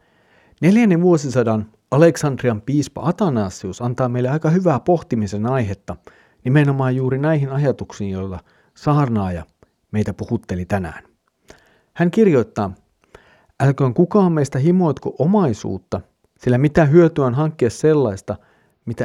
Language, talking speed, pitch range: Finnish, 105 wpm, 105-150 Hz